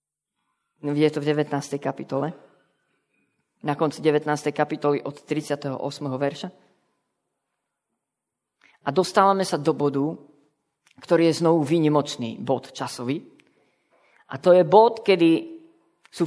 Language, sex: Slovak, female